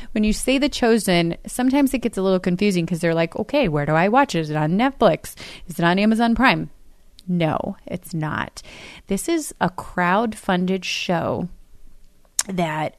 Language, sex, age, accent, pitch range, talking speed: English, female, 30-49, American, 170-220 Hz, 175 wpm